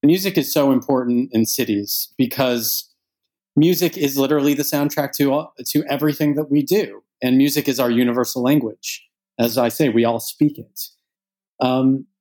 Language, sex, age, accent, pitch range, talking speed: English, male, 30-49, American, 115-145 Hz, 160 wpm